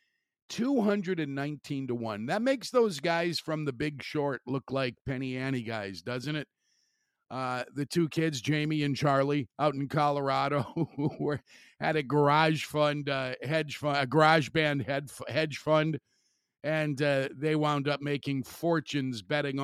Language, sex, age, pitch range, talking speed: English, male, 50-69, 135-170 Hz, 155 wpm